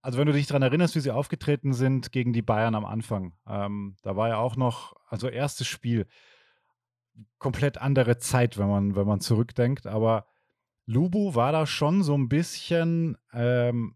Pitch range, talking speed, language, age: 115-145 Hz, 170 wpm, German, 30-49